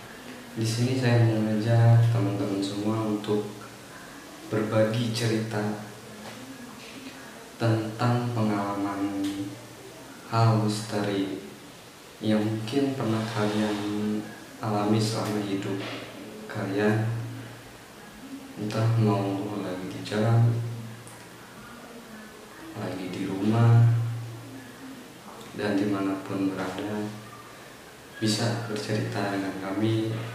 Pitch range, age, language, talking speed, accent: 100-115 Hz, 20-39, Indonesian, 70 wpm, native